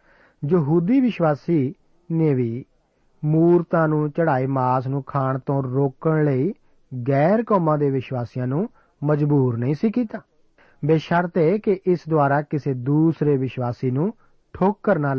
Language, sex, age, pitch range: Punjabi, male, 40-59, 135-180 Hz